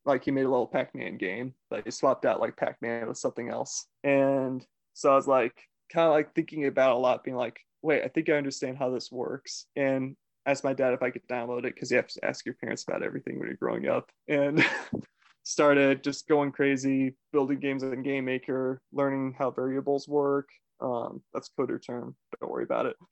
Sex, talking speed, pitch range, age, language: male, 215 wpm, 130-145 Hz, 20-39, English